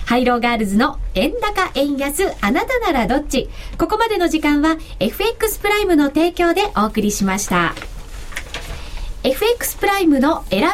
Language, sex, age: Japanese, female, 50-69